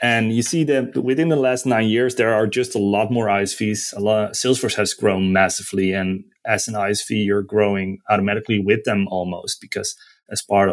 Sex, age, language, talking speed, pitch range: male, 30-49, English, 200 wpm, 100-110 Hz